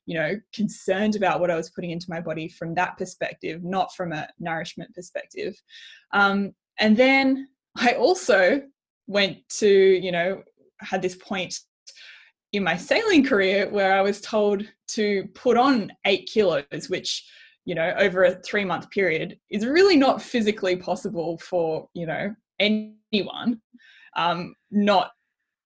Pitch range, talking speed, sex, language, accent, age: 180-235 Hz, 145 wpm, female, English, Australian, 10-29